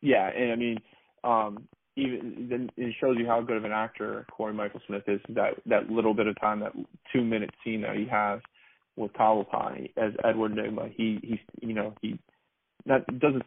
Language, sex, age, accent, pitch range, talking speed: English, male, 30-49, American, 110-120 Hz, 195 wpm